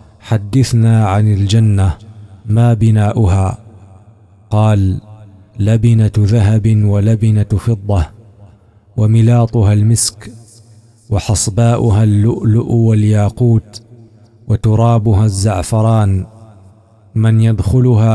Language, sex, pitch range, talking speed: Arabic, male, 105-120 Hz, 65 wpm